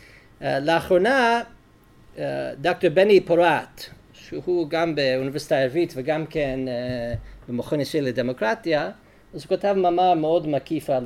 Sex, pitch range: male, 140-195 Hz